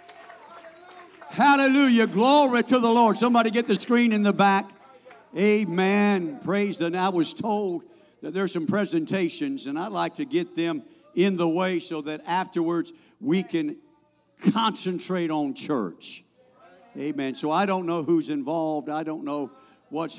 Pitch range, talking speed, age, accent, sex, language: 165-275 Hz, 150 wpm, 60-79, American, male, English